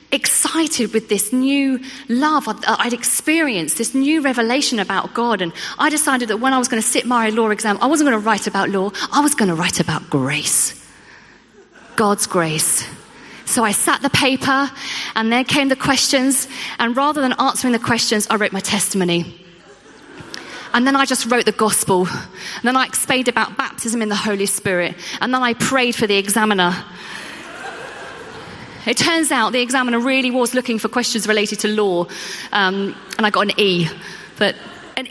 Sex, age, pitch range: female, 30-49, 215-290 Hz